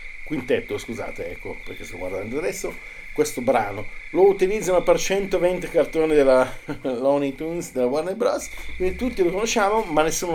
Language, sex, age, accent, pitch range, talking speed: Italian, male, 50-69, native, 115-150 Hz, 150 wpm